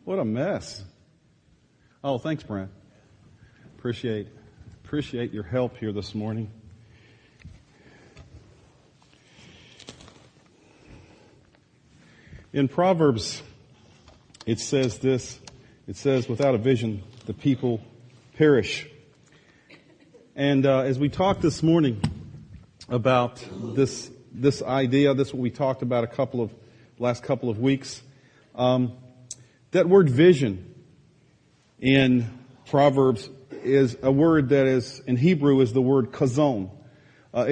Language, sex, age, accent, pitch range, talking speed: English, male, 40-59, American, 125-160 Hz, 105 wpm